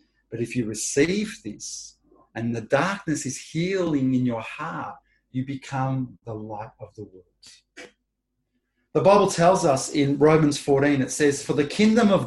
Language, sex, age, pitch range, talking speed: English, male, 30-49, 140-195 Hz, 160 wpm